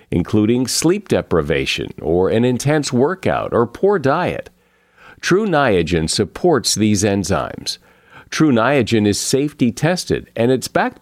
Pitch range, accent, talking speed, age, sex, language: 95-140 Hz, American, 125 wpm, 50-69, male, English